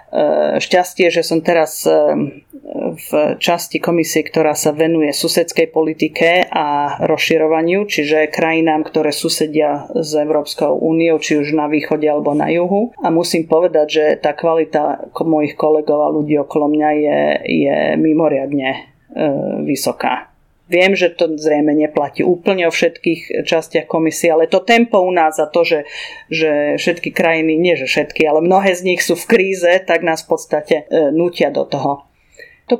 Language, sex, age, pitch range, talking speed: English, female, 40-59, 160-190 Hz, 150 wpm